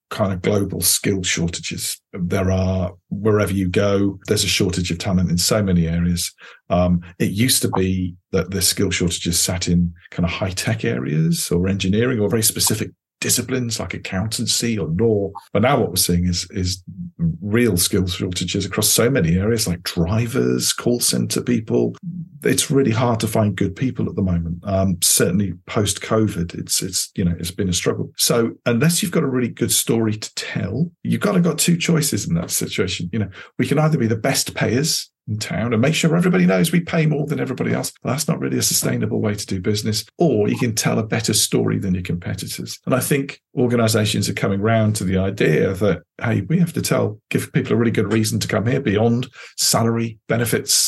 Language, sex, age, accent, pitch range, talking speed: English, male, 40-59, British, 95-125 Hz, 205 wpm